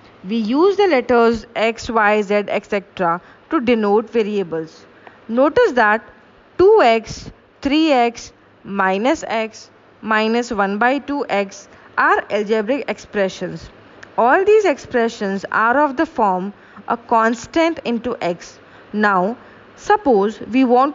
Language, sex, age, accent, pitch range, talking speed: English, female, 20-39, Indian, 210-265 Hz, 110 wpm